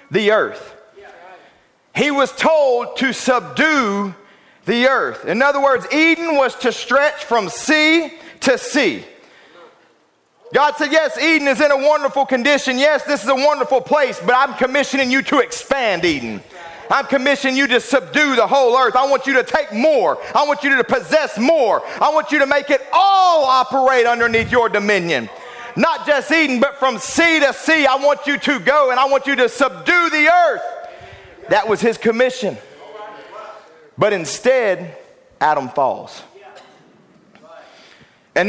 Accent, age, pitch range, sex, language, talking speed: American, 40-59, 250-300 Hz, male, English, 160 wpm